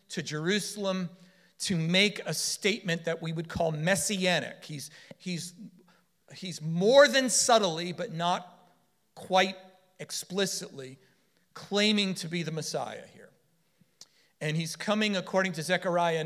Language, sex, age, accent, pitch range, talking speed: English, male, 40-59, American, 140-180 Hz, 120 wpm